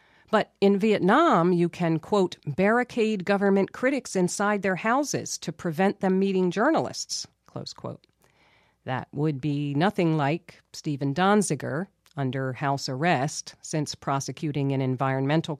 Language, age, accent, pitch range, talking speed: English, 50-69, American, 140-185 Hz, 125 wpm